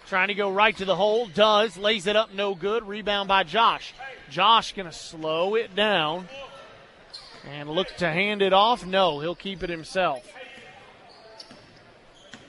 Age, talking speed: 30-49, 155 wpm